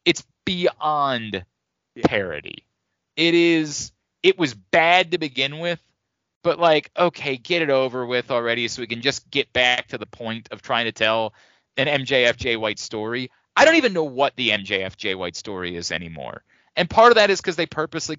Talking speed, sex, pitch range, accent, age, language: 180 wpm, male, 130-195 Hz, American, 30-49, English